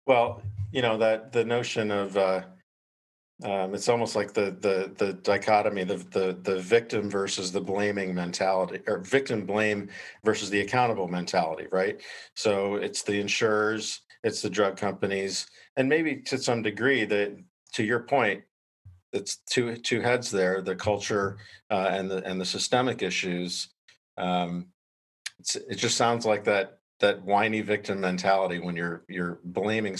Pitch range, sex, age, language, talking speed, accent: 95-110 Hz, male, 50-69, English, 155 wpm, American